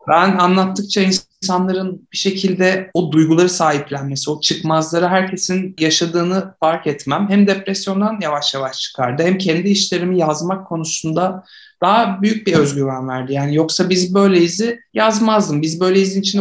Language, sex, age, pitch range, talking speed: Turkish, male, 60-79, 160-200 Hz, 145 wpm